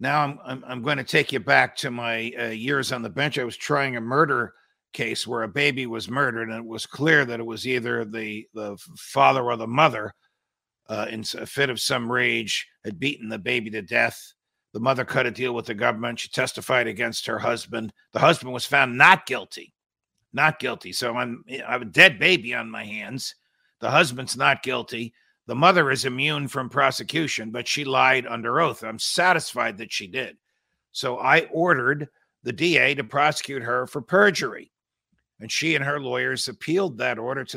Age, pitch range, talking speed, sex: 50-69, 115-145 Hz, 200 wpm, male